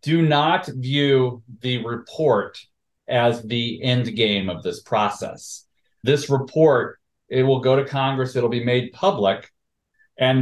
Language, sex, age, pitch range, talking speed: English, male, 40-59, 120-150 Hz, 140 wpm